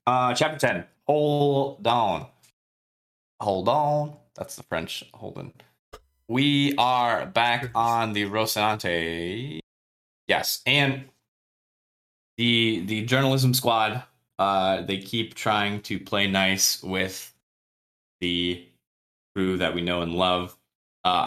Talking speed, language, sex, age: 110 wpm, English, male, 20-39